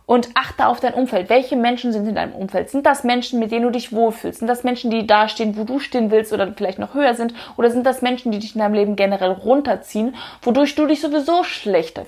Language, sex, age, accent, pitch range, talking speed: German, female, 20-39, German, 210-260 Hz, 250 wpm